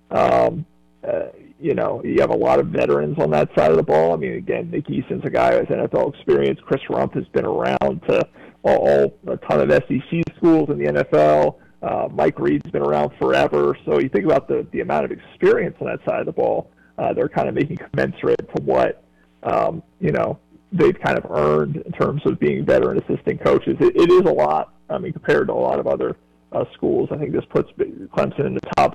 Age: 40-59